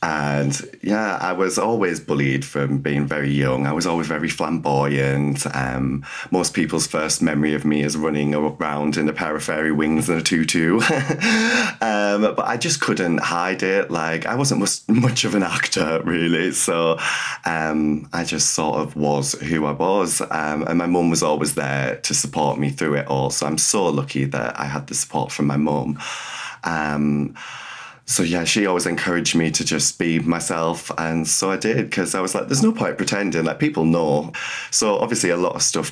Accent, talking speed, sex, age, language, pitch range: British, 195 wpm, male, 20-39, English, 70-85 Hz